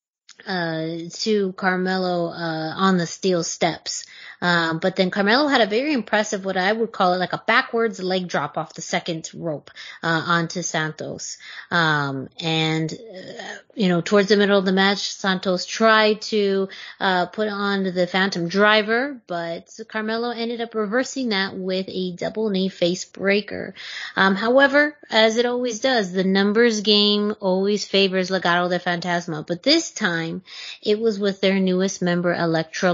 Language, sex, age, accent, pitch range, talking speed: English, female, 30-49, American, 175-210 Hz, 160 wpm